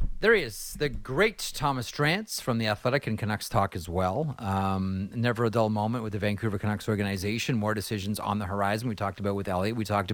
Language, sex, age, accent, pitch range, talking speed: English, male, 30-49, American, 100-120 Hz, 220 wpm